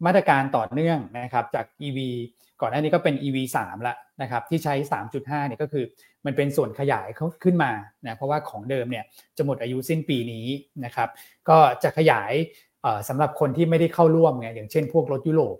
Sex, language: male, Thai